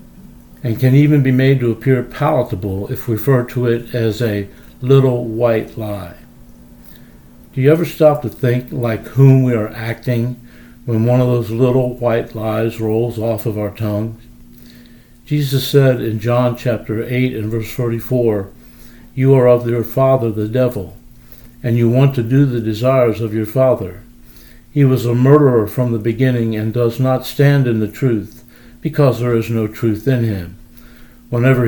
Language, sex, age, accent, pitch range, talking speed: English, male, 60-79, American, 115-130 Hz, 165 wpm